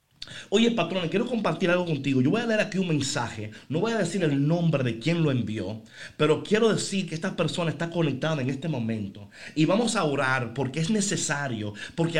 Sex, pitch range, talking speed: male, 145-210 Hz, 205 wpm